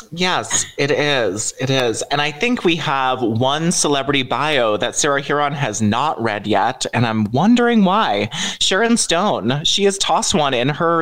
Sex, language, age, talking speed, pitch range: male, English, 20-39, 175 wpm, 115-155 Hz